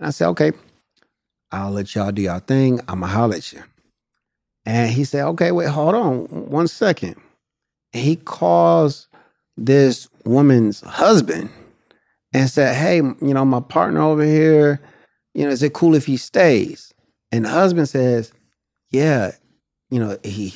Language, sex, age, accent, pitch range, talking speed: English, male, 30-49, American, 110-150 Hz, 160 wpm